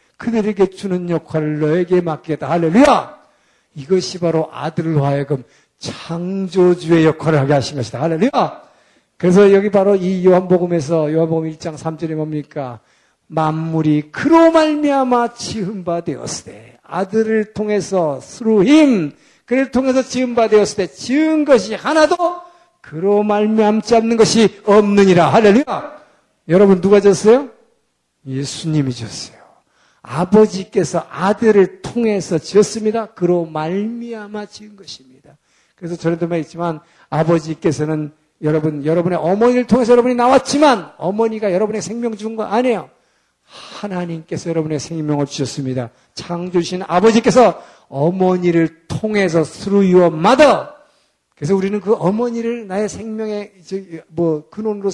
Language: Korean